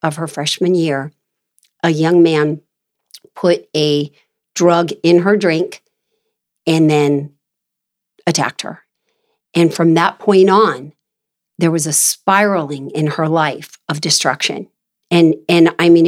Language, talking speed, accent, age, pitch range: English, 130 wpm, American, 50-69, 155-185 Hz